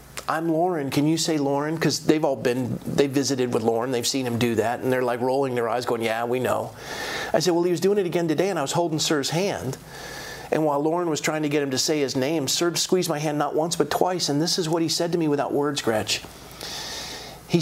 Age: 40-59